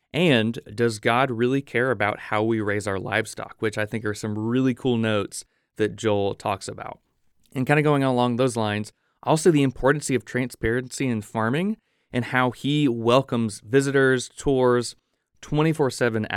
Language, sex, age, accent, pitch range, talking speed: English, male, 30-49, American, 105-130 Hz, 160 wpm